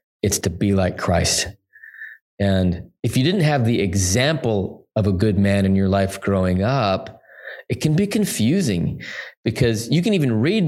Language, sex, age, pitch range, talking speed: English, male, 20-39, 100-125 Hz, 170 wpm